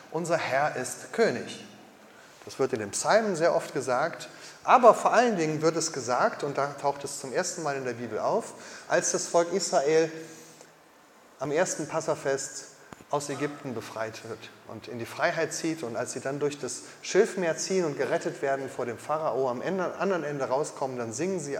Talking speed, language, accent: 190 wpm, German, German